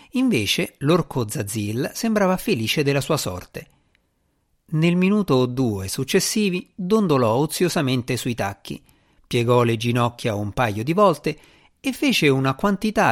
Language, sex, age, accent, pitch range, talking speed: Italian, male, 50-69, native, 105-180 Hz, 130 wpm